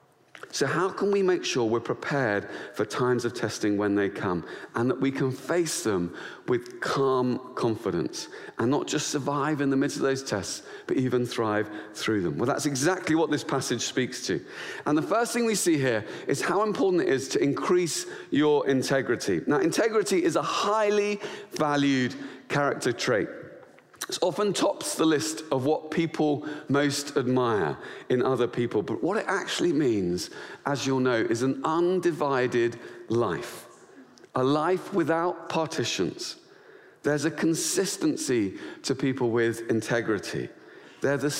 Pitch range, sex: 130-180 Hz, male